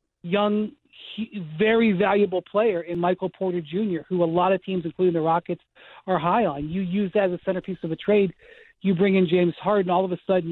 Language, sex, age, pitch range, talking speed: English, male, 40-59, 170-200 Hz, 210 wpm